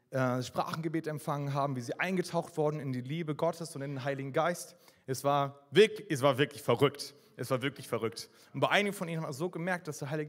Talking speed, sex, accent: 225 wpm, male, German